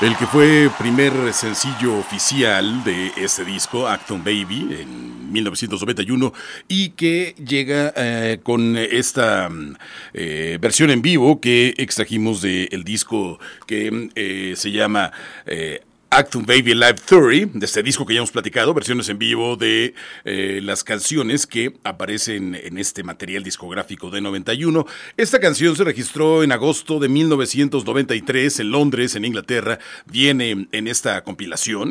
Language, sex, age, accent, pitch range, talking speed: Spanish, male, 40-59, Mexican, 110-140 Hz, 140 wpm